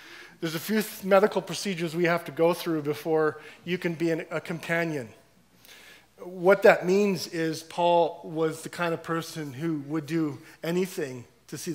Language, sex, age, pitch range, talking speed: English, male, 40-59, 155-185 Hz, 165 wpm